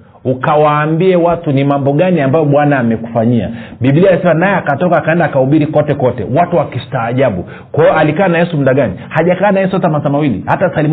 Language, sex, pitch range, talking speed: Swahili, male, 140-185 Hz, 175 wpm